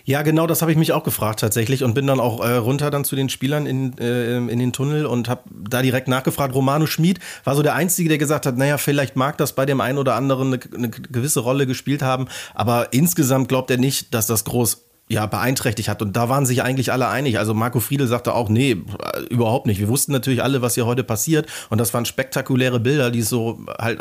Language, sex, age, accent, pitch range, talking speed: German, male, 30-49, German, 120-135 Hz, 240 wpm